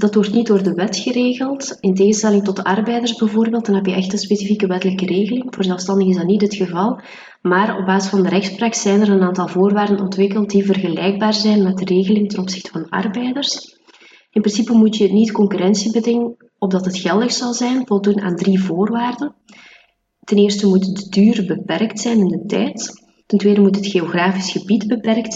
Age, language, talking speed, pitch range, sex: 20-39, Dutch, 195 wpm, 185-215 Hz, female